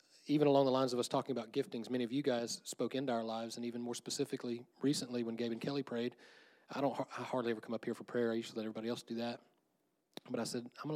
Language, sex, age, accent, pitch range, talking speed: English, male, 30-49, American, 115-130 Hz, 265 wpm